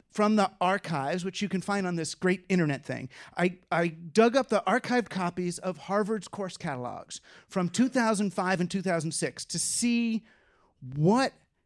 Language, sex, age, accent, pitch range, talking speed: English, male, 40-59, American, 170-220 Hz, 155 wpm